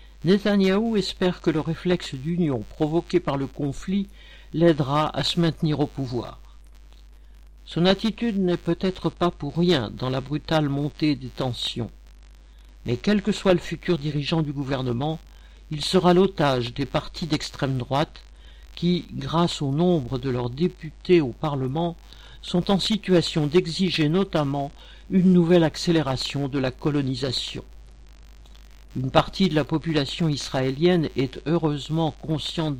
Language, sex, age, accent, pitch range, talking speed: French, male, 60-79, French, 130-170 Hz, 135 wpm